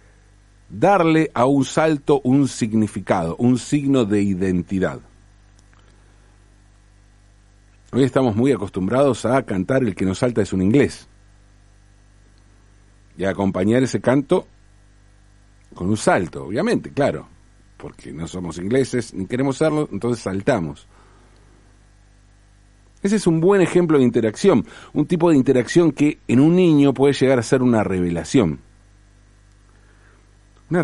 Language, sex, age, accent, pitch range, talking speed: Spanish, male, 50-69, Argentinian, 95-120 Hz, 125 wpm